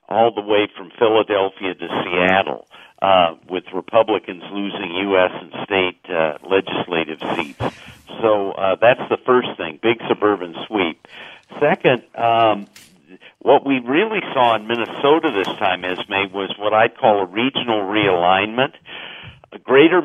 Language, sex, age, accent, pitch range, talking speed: English, male, 50-69, American, 95-115 Hz, 135 wpm